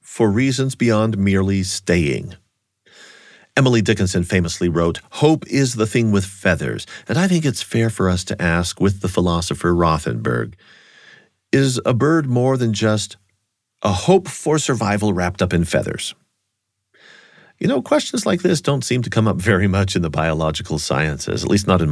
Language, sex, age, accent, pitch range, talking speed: English, male, 40-59, American, 95-135 Hz, 170 wpm